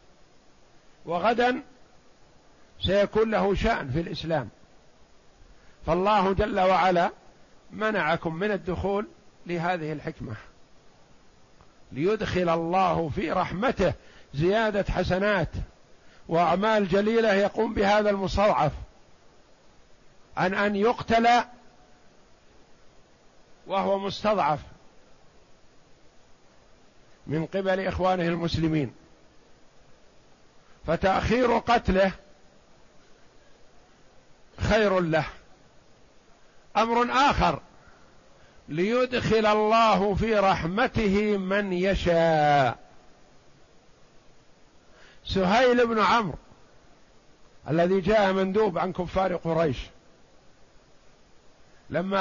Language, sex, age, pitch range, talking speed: Arabic, male, 50-69, 170-210 Hz, 65 wpm